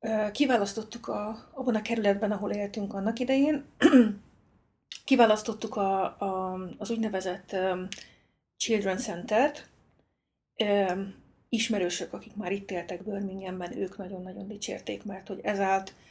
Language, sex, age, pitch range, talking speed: Hungarian, female, 30-49, 190-225 Hz, 105 wpm